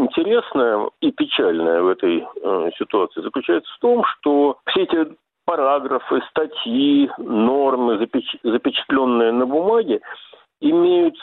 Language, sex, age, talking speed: Russian, male, 50-69, 110 wpm